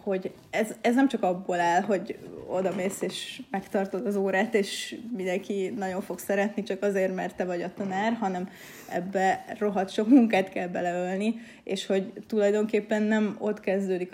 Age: 20-39